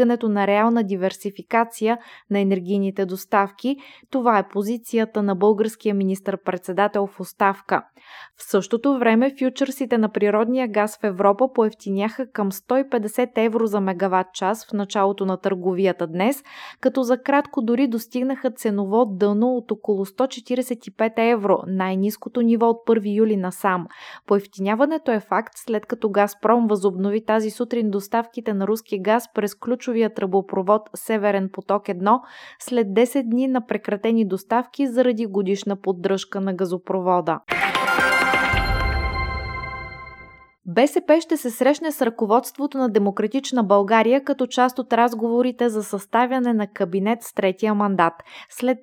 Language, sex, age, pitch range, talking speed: Bulgarian, female, 20-39, 195-245 Hz, 130 wpm